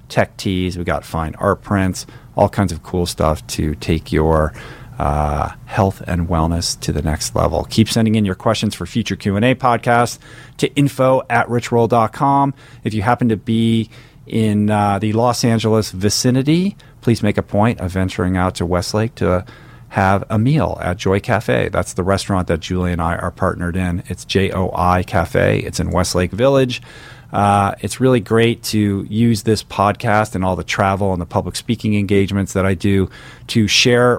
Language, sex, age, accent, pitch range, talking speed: English, male, 40-59, American, 90-115 Hz, 175 wpm